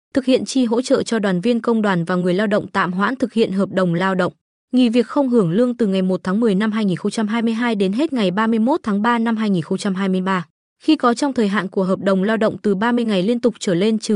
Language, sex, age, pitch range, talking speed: Vietnamese, female, 20-39, 190-240 Hz, 255 wpm